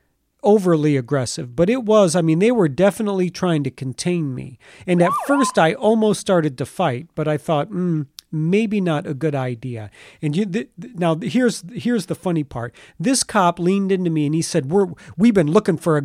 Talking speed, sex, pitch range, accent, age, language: 205 wpm, male, 155-210 Hz, American, 40-59, English